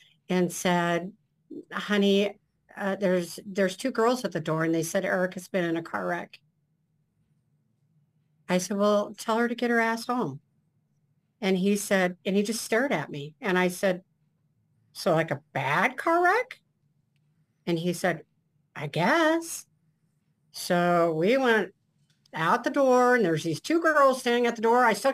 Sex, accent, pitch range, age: female, American, 160-205 Hz, 50-69